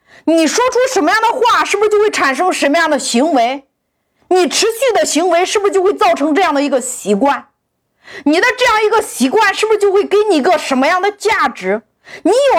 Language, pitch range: Chinese, 255-390 Hz